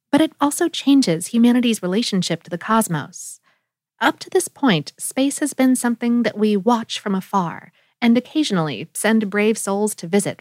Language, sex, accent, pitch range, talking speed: English, female, American, 195-265 Hz, 165 wpm